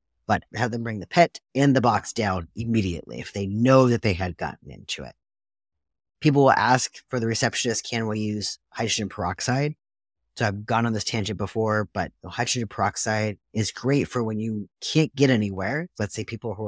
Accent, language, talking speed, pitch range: American, English, 190 wpm, 100-130 Hz